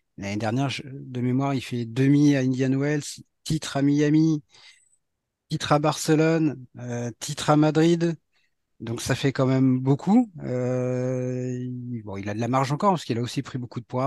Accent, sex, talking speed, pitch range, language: French, male, 180 wpm, 125-150 Hz, French